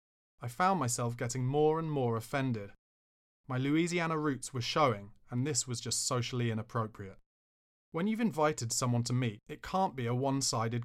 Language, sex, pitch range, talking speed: English, male, 105-145 Hz, 165 wpm